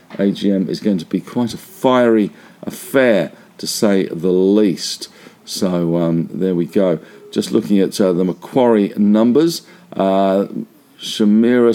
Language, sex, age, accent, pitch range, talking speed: English, male, 50-69, British, 100-125 Hz, 140 wpm